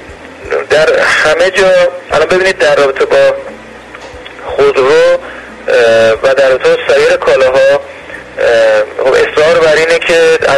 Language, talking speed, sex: Persian, 110 wpm, male